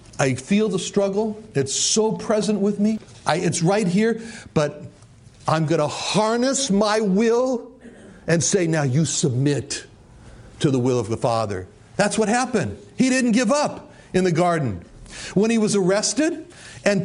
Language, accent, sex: English, American, male